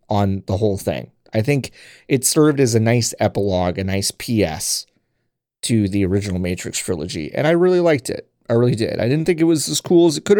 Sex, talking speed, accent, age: male, 220 wpm, American, 30-49